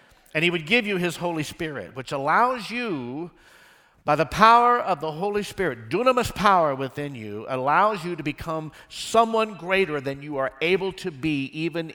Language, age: English, 50-69